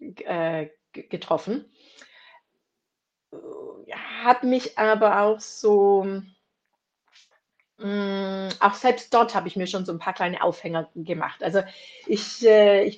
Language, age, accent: German, 30-49, German